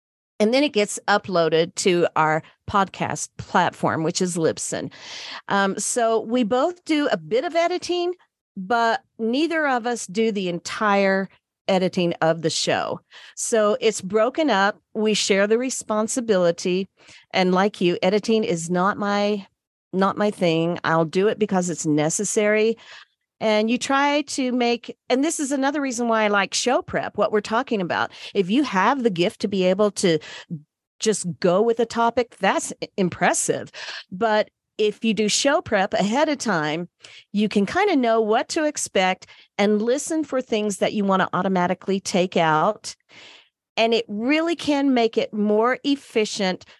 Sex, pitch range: female, 180-235 Hz